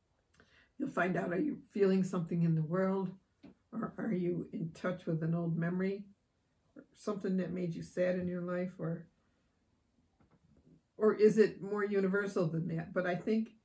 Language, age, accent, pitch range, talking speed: English, 60-79, American, 165-195 Hz, 170 wpm